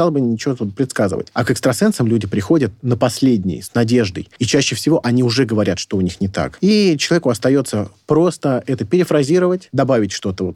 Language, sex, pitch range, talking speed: Russian, male, 105-135 Hz, 190 wpm